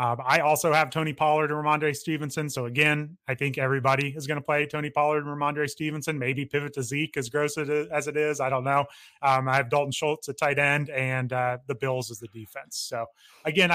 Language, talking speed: English, 230 wpm